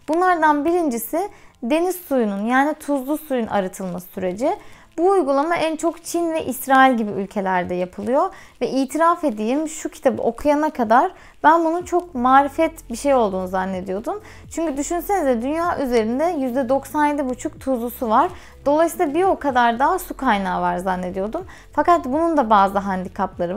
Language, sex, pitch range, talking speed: Turkish, female, 230-310 Hz, 145 wpm